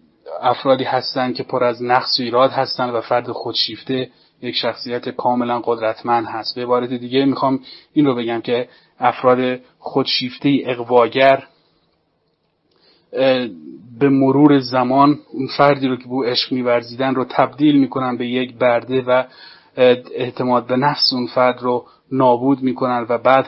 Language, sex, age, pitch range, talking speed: Persian, male, 30-49, 120-135 Hz, 140 wpm